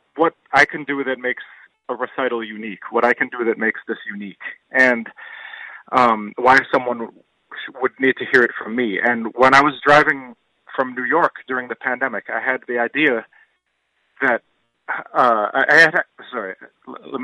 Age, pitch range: 40-59, 115-140 Hz